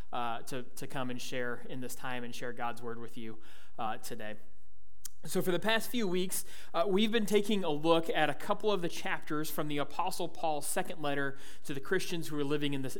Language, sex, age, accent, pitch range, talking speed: English, male, 30-49, American, 135-185 Hz, 225 wpm